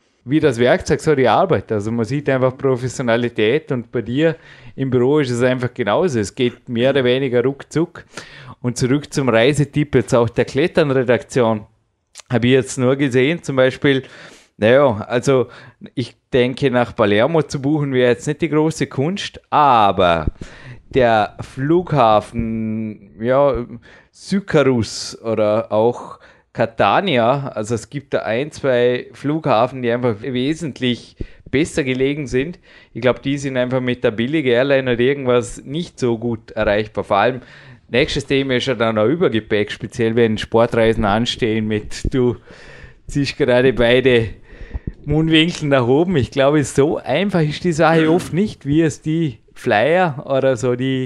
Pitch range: 120-145 Hz